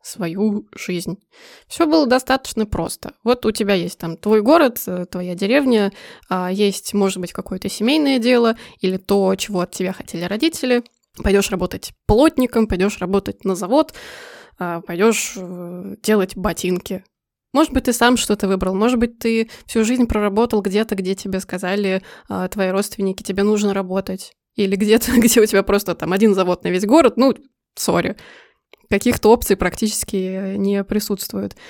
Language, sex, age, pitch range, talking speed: Russian, female, 20-39, 195-245 Hz, 150 wpm